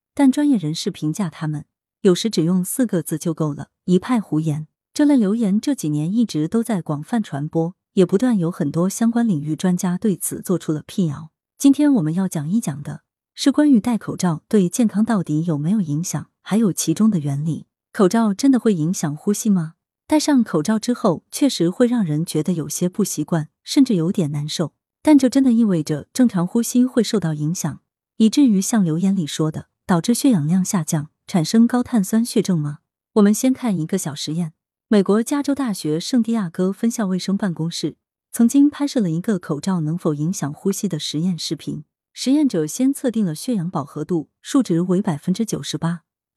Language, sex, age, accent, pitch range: Chinese, female, 20-39, native, 160-230 Hz